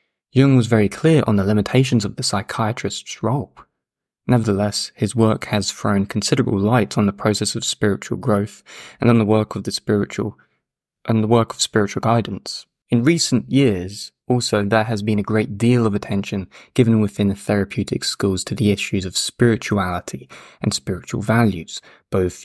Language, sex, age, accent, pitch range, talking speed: English, male, 20-39, British, 100-120 Hz, 170 wpm